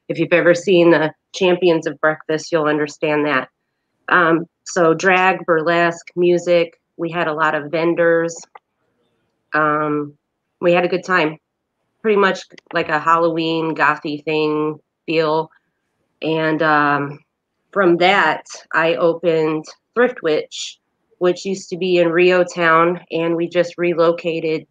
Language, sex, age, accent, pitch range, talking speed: English, female, 30-49, American, 155-175 Hz, 130 wpm